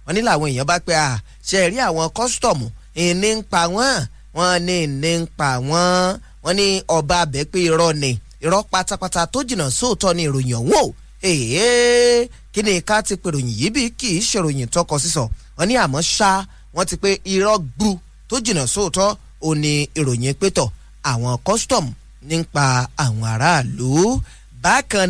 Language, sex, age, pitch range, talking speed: English, male, 20-39, 145-205 Hz, 145 wpm